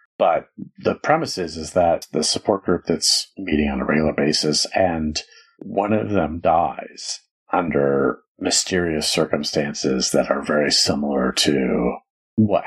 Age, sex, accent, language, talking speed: 40-59, male, American, English, 135 wpm